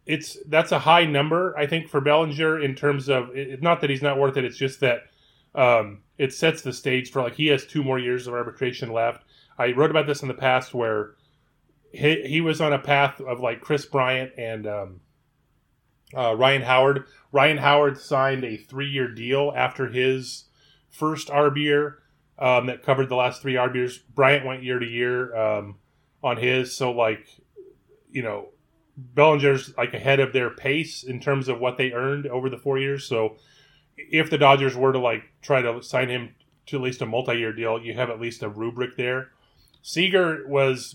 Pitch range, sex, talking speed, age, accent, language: 125-145 Hz, male, 190 wpm, 30-49, American, English